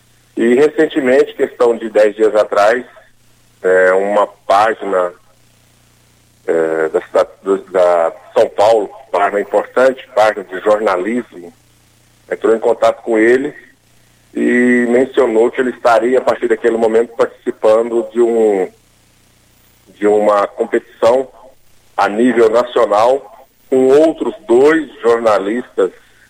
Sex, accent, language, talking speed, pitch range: male, Brazilian, Portuguese, 105 wpm, 105-135 Hz